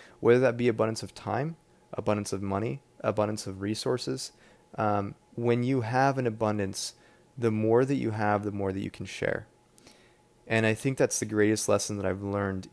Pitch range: 100-120 Hz